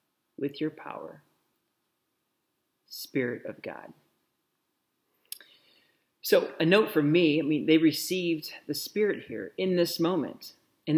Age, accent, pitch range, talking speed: 40-59, American, 135-160 Hz, 120 wpm